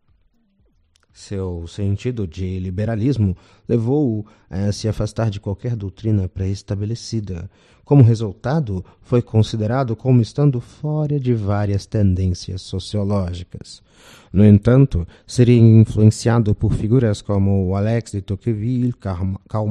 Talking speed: 105 wpm